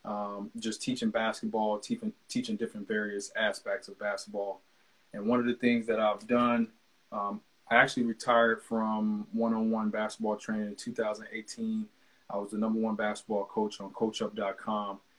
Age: 20-39